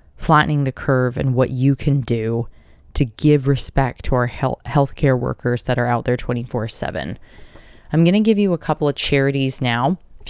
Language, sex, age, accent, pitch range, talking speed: English, female, 20-39, American, 125-150 Hz, 190 wpm